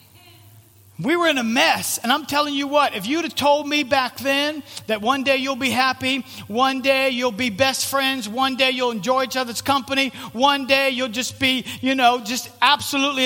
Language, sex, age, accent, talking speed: English, male, 50-69, American, 205 wpm